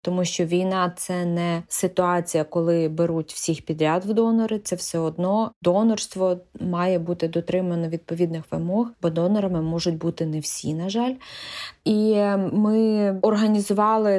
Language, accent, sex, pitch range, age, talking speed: Ukrainian, native, female, 175-210 Hz, 20-39, 140 wpm